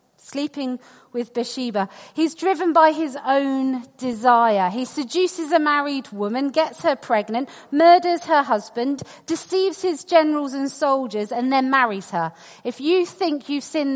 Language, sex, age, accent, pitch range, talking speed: English, female, 40-59, British, 210-320 Hz, 145 wpm